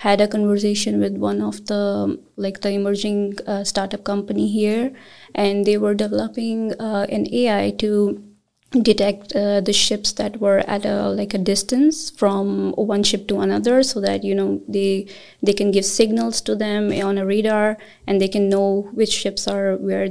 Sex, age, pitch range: female, 20-39, 195-215 Hz